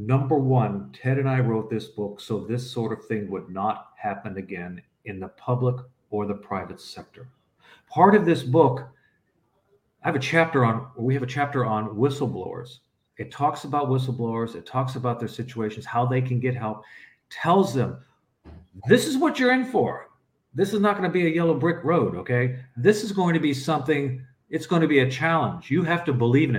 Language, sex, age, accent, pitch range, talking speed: English, male, 50-69, American, 115-150 Hz, 200 wpm